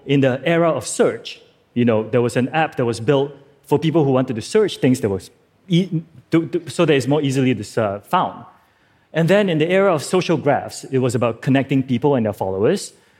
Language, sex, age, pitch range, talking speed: English, male, 30-49, 125-160 Hz, 220 wpm